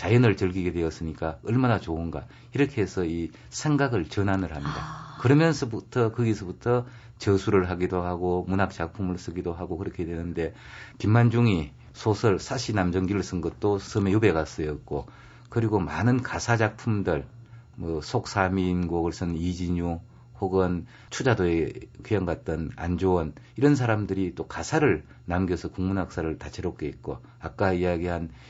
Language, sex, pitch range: Korean, male, 85-115 Hz